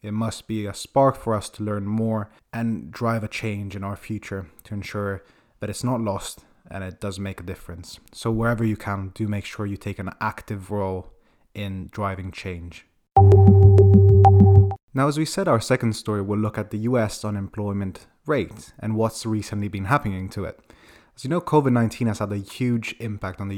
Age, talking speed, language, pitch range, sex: 20-39, 190 wpm, English, 100-120 Hz, male